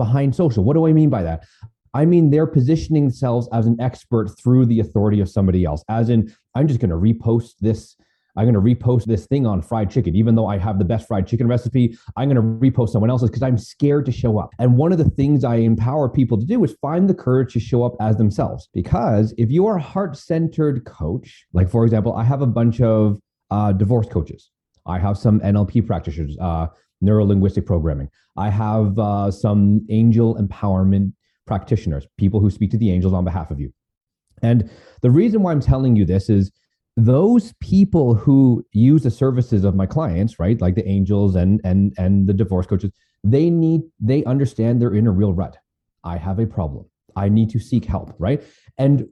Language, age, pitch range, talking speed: English, 30-49, 100-130 Hz, 210 wpm